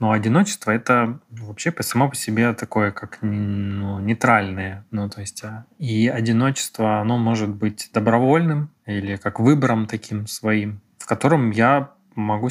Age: 20-39